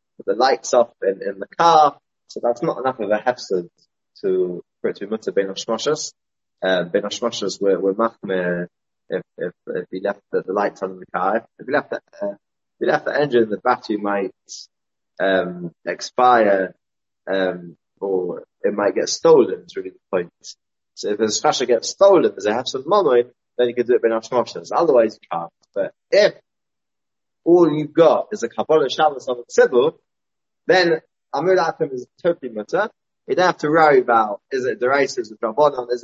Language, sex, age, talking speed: English, male, 20-39, 190 wpm